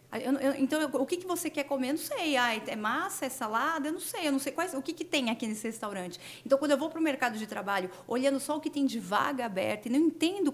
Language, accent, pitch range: Portuguese, Brazilian, 225-290 Hz